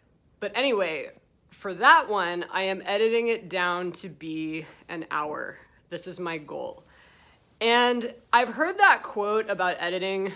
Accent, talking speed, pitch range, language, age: American, 145 wpm, 170-210 Hz, English, 20-39